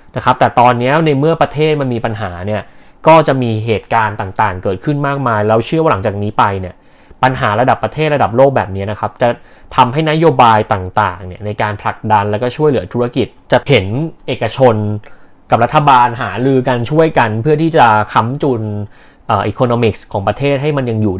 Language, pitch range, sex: Thai, 105-130 Hz, male